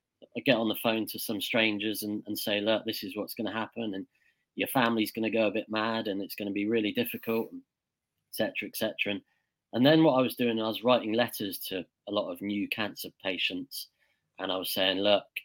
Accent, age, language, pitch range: British, 30-49, English, 100-120 Hz